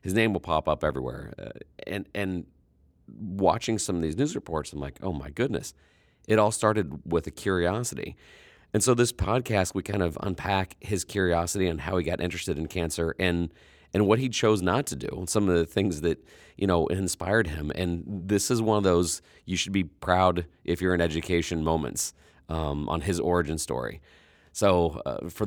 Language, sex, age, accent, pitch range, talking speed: English, male, 40-59, American, 75-95 Hz, 195 wpm